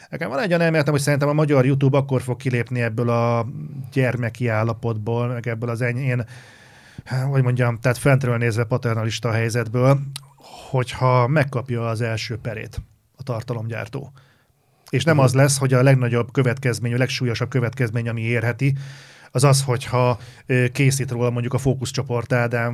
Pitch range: 115-130 Hz